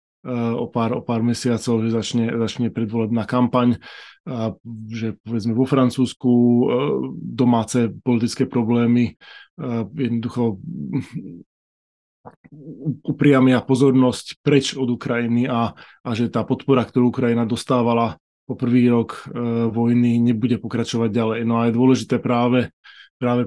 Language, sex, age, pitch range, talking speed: Slovak, male, 20-39, 115-125 Hz, 110 wpm